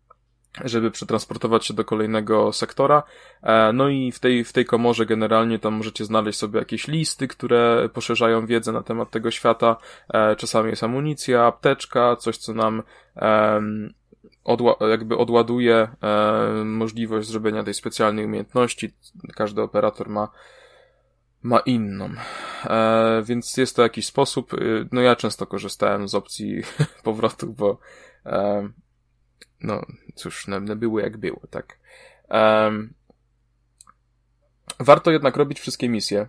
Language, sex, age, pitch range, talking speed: Polish, male, 20-39, 110-120 Hz, 125 wpm